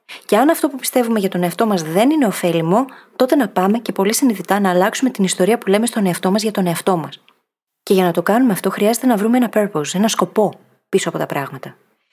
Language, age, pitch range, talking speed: Greek, 30-49, 185-250 Hz, 240 wpm